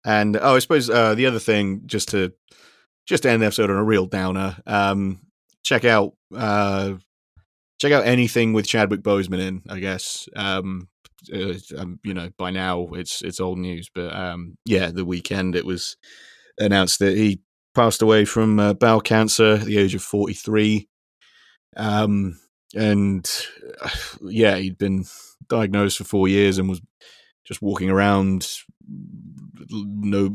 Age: 30-49